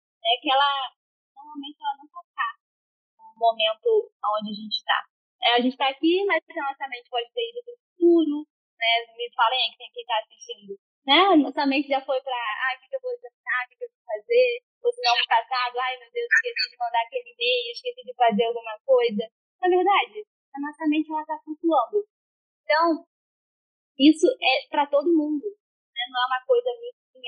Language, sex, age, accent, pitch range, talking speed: Portuguese, female, 10-29, Brazilian, 260-390 Hz, 210 wpm